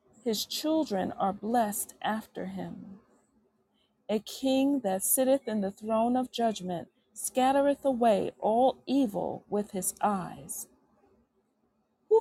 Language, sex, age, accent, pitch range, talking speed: English, female, 40-59, American, 200-245 Hz, 115 wpm